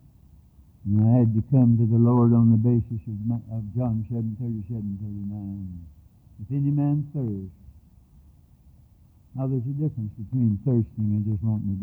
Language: English